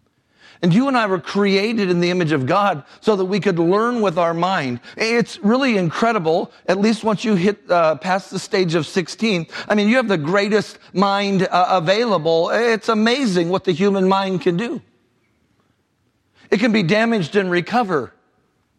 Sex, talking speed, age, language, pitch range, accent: male, 180 wpm, 50-69, English, 185-225 Hz, American